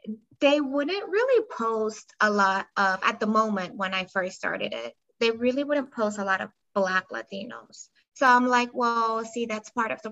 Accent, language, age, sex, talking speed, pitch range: American, English, 20-39, female, 195 wpm, 205-245 Hz